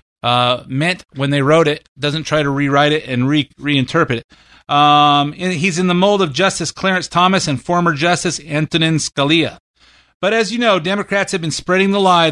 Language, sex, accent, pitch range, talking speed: English, male, American, 145-180 Hz, 195 wpm